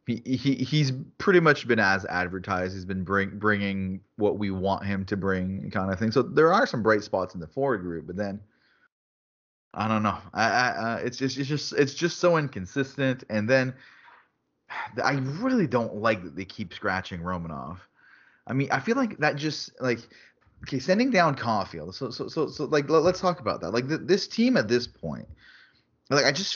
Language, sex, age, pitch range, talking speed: English, male, 30-49, 100-135 Hz, 200 wpm